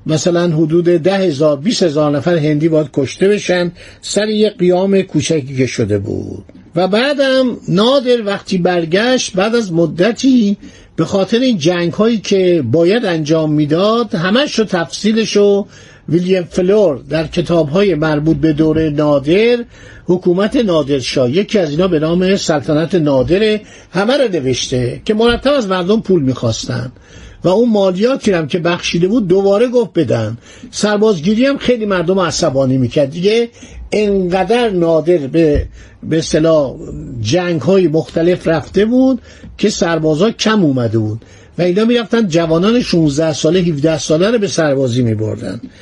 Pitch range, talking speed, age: 155-210 Hz, 140 wpm, 50-69